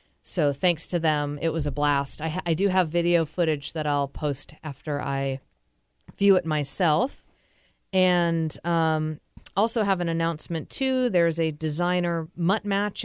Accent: American